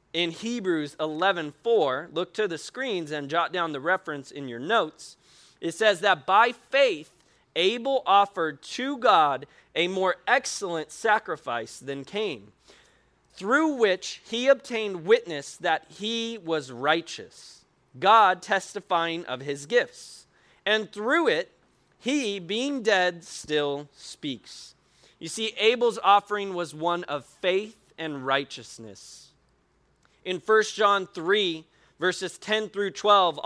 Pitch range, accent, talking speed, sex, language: 165-240 Hz, American, 125 wpm, male, English